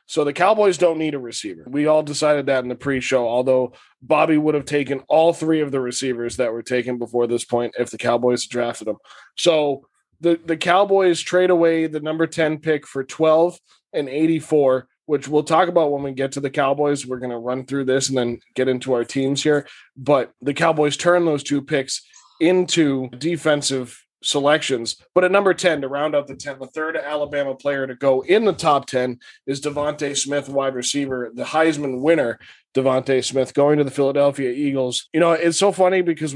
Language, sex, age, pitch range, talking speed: English, male, 20-39, 135-160 Hz, 200 wpm